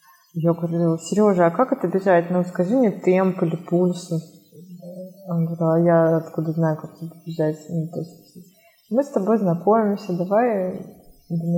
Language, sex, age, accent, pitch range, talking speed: Russian, female, 20-39, native, 175-210 Hz, 145 wpm